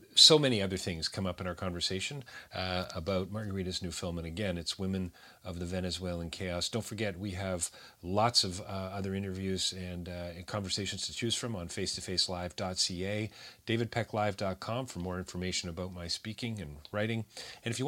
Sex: male